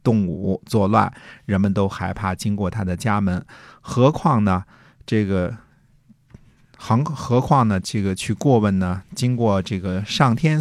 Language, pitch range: Chinese, 95-125 Hz